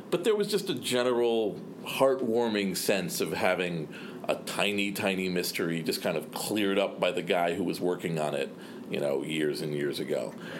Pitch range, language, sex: 90-115 Hz, English, male